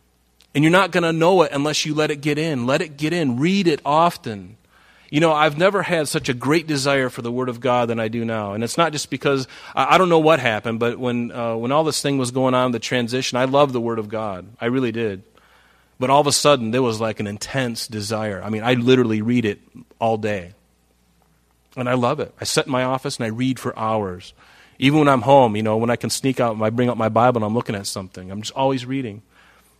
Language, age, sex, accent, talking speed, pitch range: English, 30-49, male, American, 260 wpm, 115-150 Hz